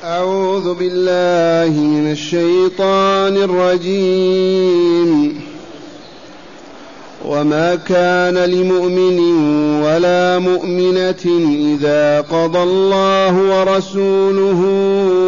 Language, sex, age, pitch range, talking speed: Arabic, male, 40-59, 170-195 Hz, 55 wpm